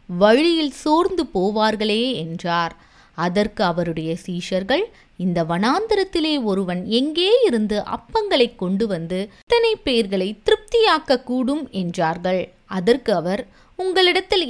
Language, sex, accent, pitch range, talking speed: Tamil, female, native, 175-285 Hz, 85 wpm